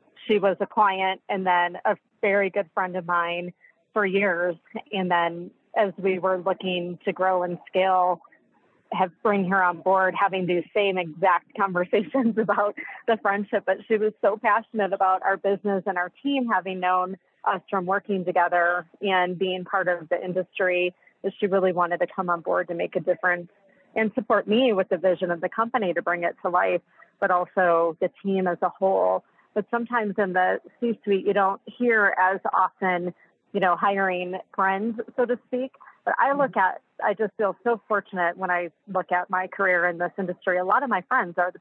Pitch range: 180-200 Hz